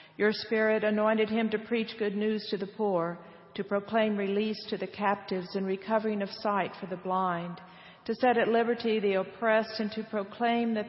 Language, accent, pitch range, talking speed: English, American, 180-215 Hz, 185 wpm